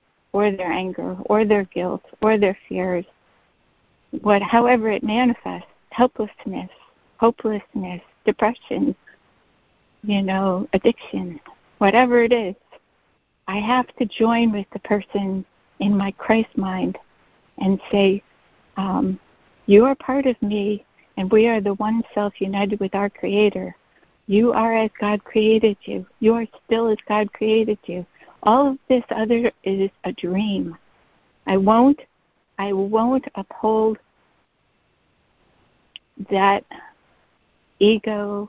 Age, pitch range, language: 60-79, 195-225 Hz, English